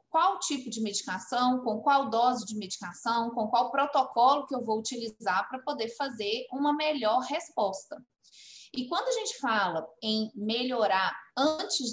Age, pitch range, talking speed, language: 20-39, 220-285 Hz, 150 wpm, Portuguese